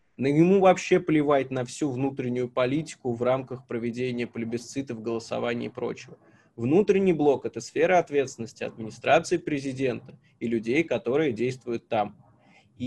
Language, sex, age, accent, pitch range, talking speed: Russian, male, 20-39, native, 130-180 Hz, 130 wpm